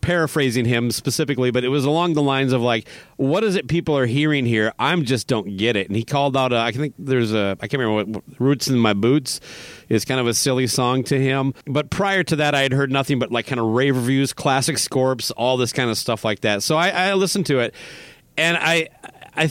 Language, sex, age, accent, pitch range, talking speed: English, male, 30-49, American, 130-180 Hz, 245 wpm